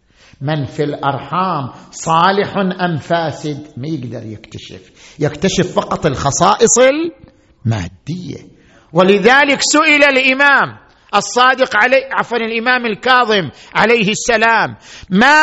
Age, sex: 50-69, male